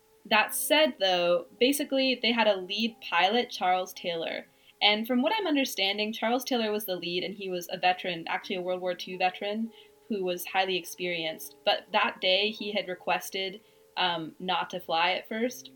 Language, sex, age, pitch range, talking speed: English, female, 20-39, 180-235 Hz, 185 wpm